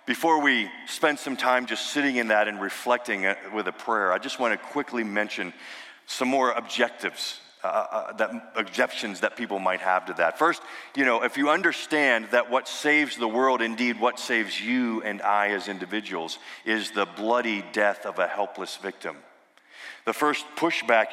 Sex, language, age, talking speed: male, English, 40-59, 175 wpm